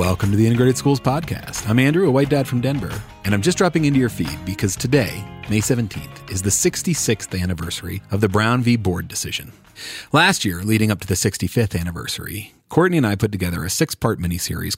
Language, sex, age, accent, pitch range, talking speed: English, male, 40-59, American, 90-120 Hz, 205 wpm